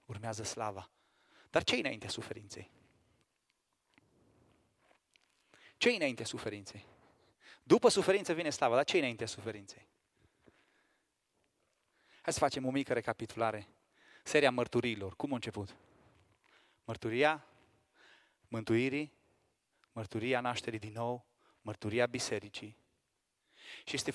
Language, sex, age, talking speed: Romanian, male, 30-49, 100 wpm